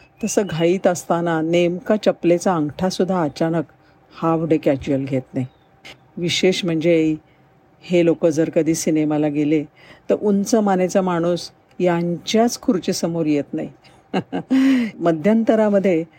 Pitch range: 155-185 Hz